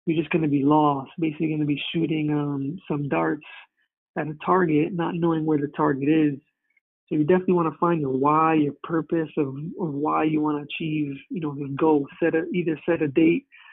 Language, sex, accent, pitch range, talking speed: English, male, American, 145-165 Hz, 220 wpm